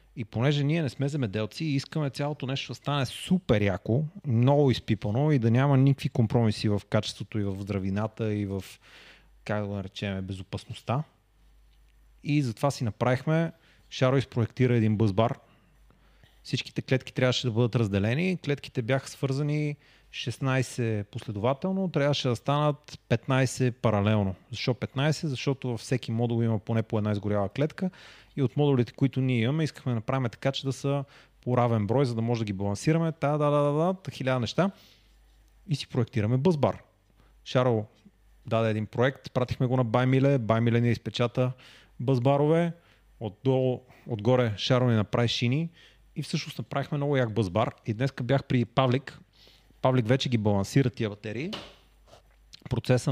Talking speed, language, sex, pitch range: 155 wpm, Bulgarian, male, 110-140 Hz